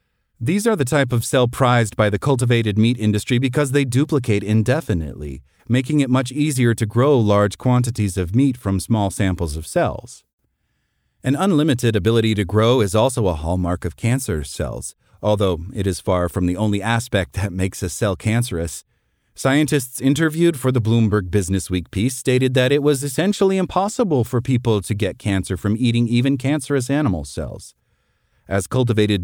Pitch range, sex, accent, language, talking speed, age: 100-135 Hz, male, American, English, 170 wpm, 40-59